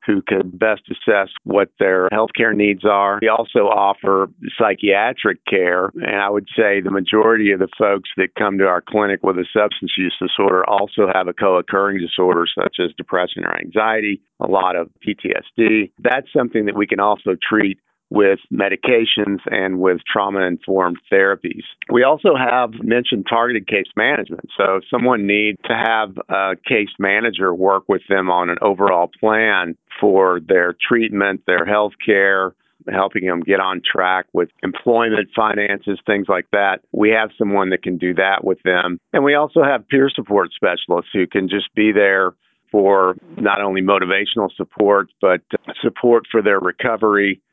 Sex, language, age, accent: male, English, 50-69, American